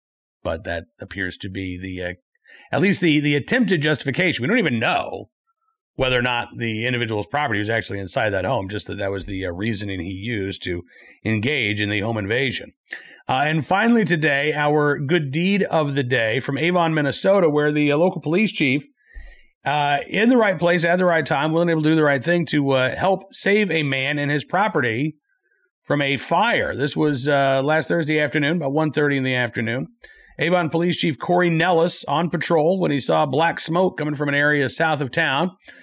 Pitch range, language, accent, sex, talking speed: 125-170 Hz, English, American, male, 200 wpm